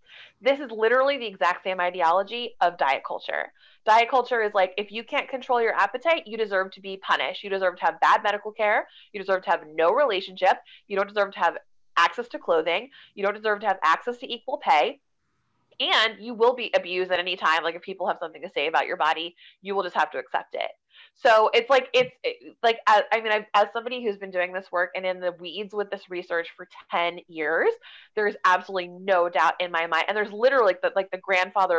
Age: 20-39